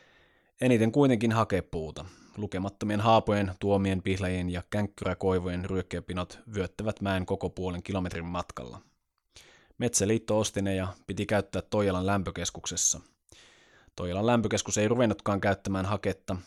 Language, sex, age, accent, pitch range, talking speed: Finnish, male, 20-39, native, 90-105 Hz, 105 wpm